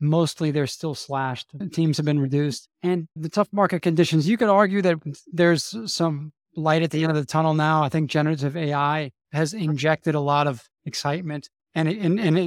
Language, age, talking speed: English, 20-39, 195 wpm